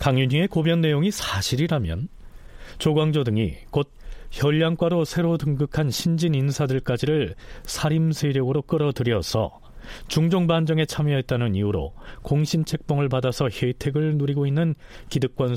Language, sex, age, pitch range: Korean, male, 40-59, 115-160 Hz